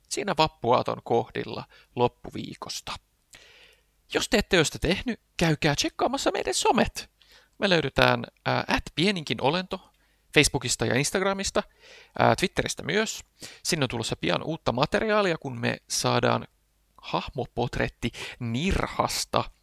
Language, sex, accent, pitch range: Finnish, male, native, 120-180 Hz